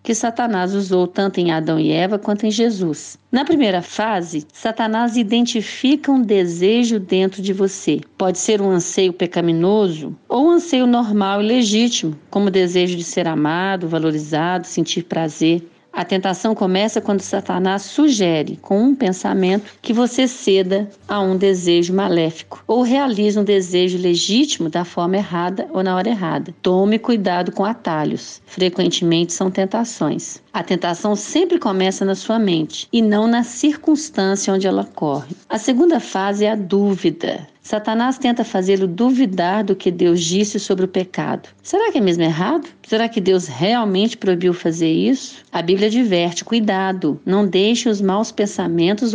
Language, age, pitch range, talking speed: Portuguese, 40-59, 180-230 Hz, 155 wpm